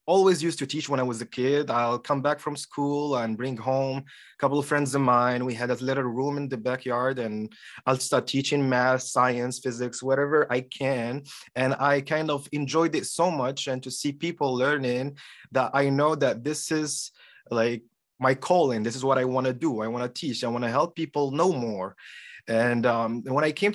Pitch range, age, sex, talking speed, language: 125-160 Hz, 20-39, male, 210 wpm, English